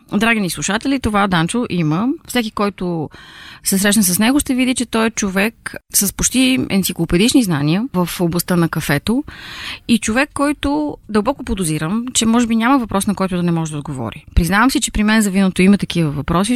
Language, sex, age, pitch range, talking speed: Bulgarian, female, 30-49, 170-235 Hz, 190 wpm